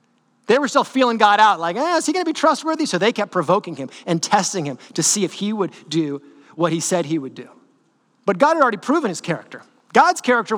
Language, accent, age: English, American, 30-49